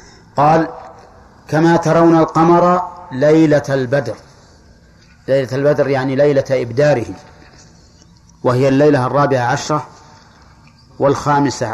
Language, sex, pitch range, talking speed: Arabic, male, 115-150 Hz, 80 wpm